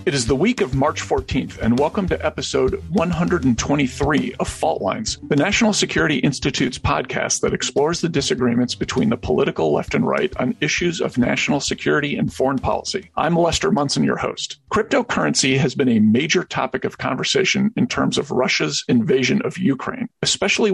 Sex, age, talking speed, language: male, 50-69, 170 wpm, English